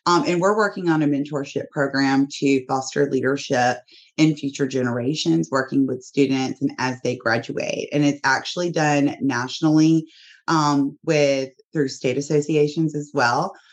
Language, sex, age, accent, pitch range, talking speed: English, female, 30-49, American, 135-155 Hz, 145 wpm